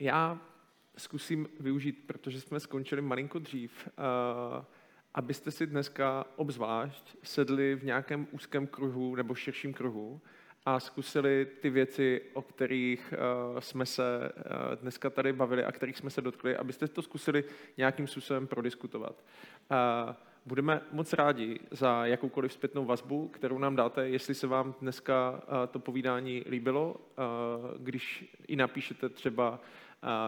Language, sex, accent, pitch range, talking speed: Czech, male, native, 125-140 Hz, 125 wpm